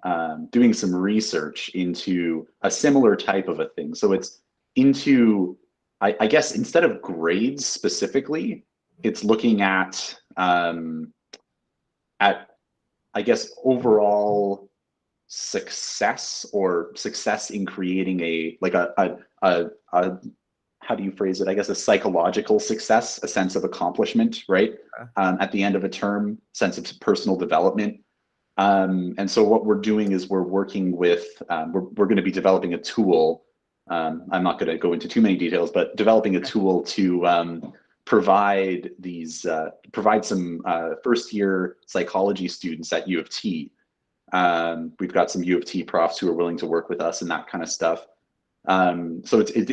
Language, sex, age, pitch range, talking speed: English, male, 30-49, 90-110 Hz, 165 wpm